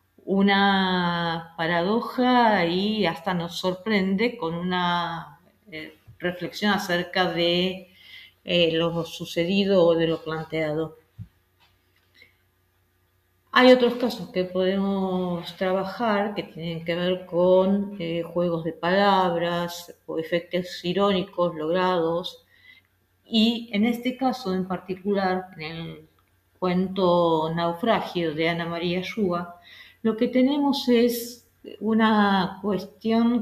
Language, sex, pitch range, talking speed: Spanish, female, 170-205 Hz, 100 wpm